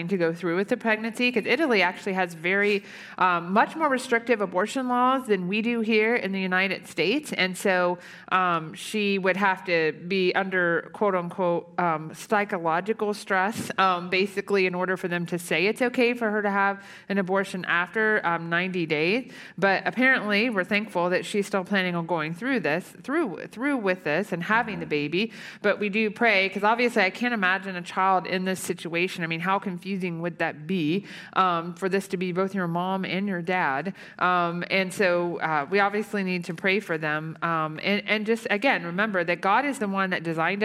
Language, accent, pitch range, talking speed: English, American, 175-205 Hz, 200 wpm